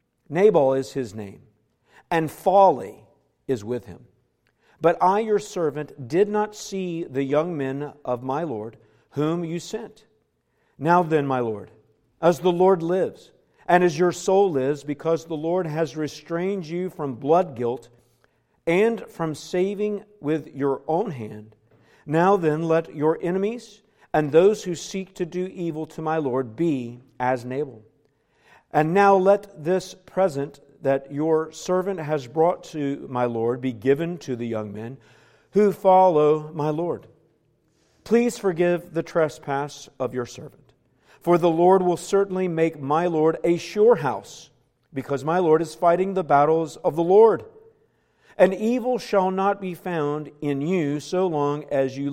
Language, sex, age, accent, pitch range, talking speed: English, male, 50-69, American, 140-180 Hz, 155 wpm